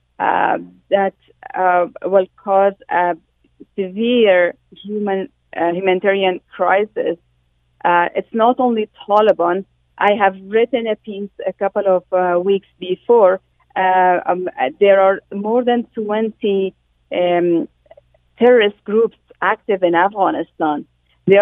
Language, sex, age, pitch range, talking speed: English, female, 40-59, 180-215 Hz, 115 wpm